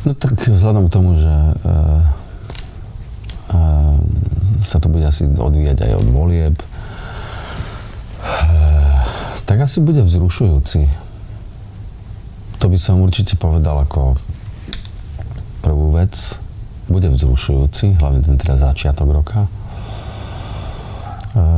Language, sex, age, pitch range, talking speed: Slovak, male, 40-59, 75-100 Hz, 105 wpm